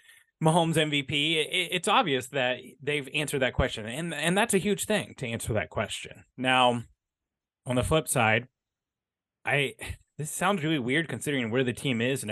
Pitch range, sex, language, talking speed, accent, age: 115-140 Hz, male, English, 170 wpm, American, 30-49